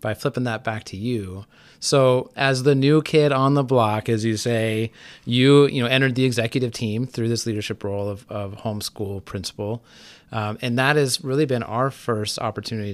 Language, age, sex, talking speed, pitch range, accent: English, 30-49, male, 190 wpm, 105-125 Hz, American